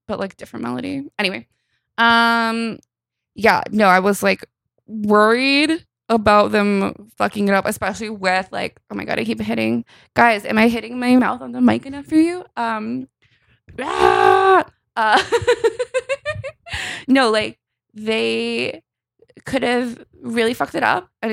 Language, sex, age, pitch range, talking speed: English, female, 20-39, 185-235 Hz, 145 wpm